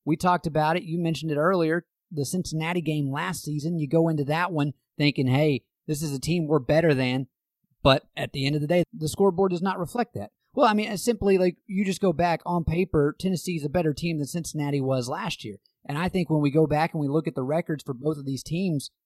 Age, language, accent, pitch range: 30-49, English, American, 140-175 Hz